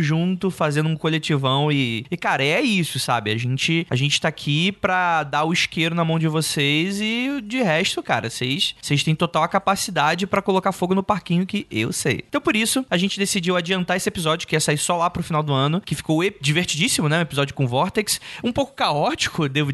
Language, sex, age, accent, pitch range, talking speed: Portuguese, male, 20-39, Brazilian, 135-180 Hz, 220 wpm